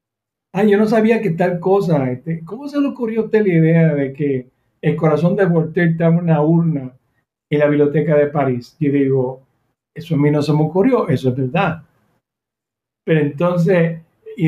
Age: 60-79